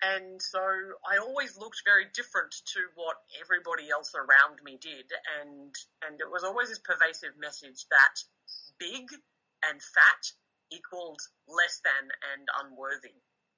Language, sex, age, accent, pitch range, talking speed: English, female, 30-49, Australian, 165-235 Hz, 135 wpm